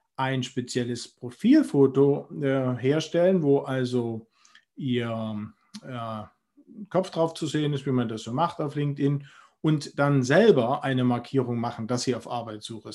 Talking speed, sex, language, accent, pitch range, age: 145 wpm, male, German, German, 125-160 Hz, 40-59